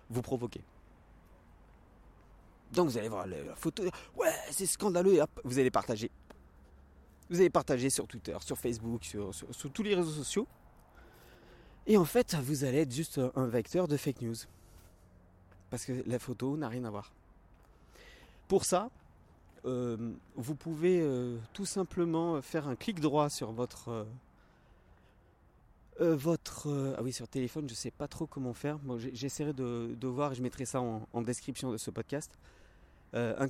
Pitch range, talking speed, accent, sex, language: 110-145 Hz, 170 wpm, French, male, French